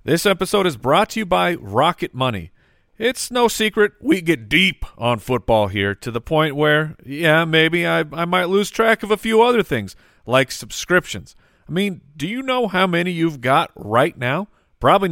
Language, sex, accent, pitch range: English, male, American, 115-170 Hz